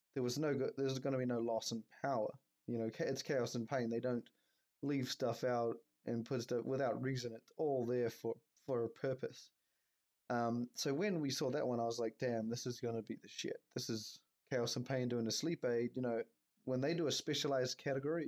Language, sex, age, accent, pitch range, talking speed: English, male, 20-39, Australian, 115-135 Hz, 230 wpm